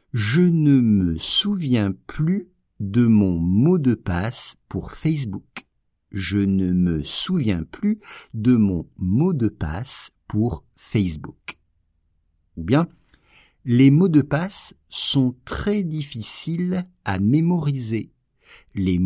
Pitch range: 95-150 Hz